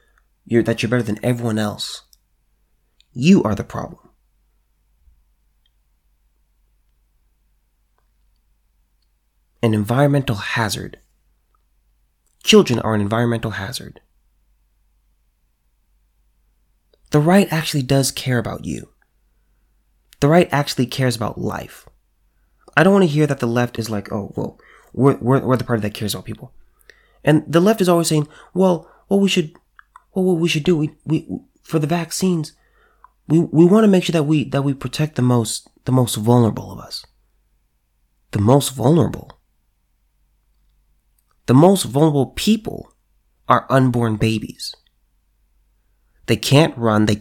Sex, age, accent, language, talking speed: male, 20-39, American, English, 135 wpm